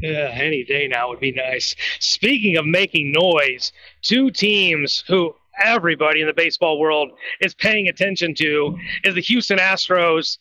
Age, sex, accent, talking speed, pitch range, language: 30-49, male, American, 150 wpm, 165-215 Hz, English